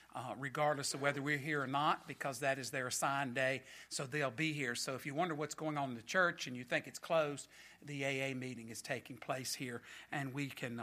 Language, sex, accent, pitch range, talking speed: English, male, American, 135-170 Hz, 240 wpm